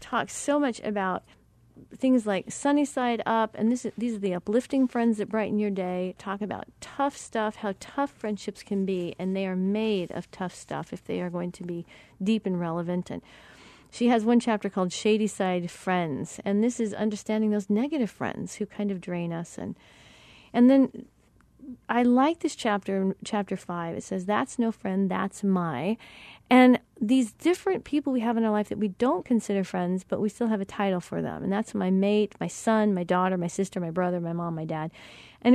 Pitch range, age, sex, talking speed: 185-230 Hz, 40-59, female, 210 wpm